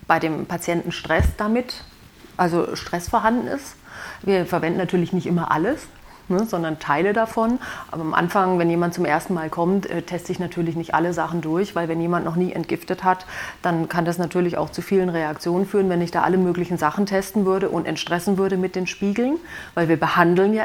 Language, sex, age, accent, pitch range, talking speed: German, female, 30-49, German, 170-200 Hz, 200 wpm